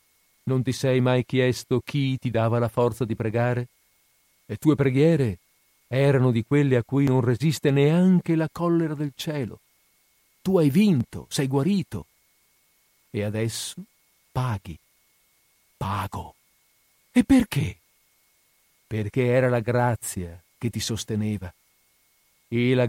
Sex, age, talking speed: male, 50-69, 125 wpm